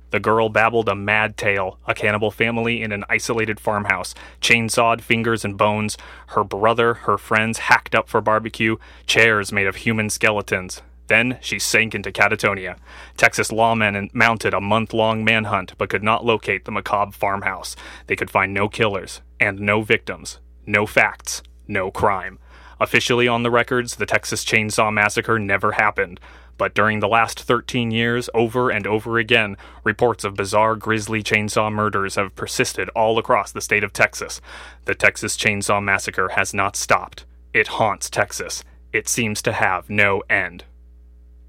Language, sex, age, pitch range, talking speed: English, male, 30-49, 105-165 Hz, 160 wpm